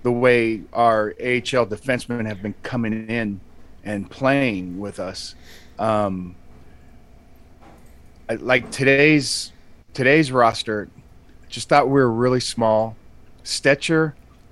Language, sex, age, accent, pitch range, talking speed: English, male, 30-49, American, 90-135 Hz, 110 wpm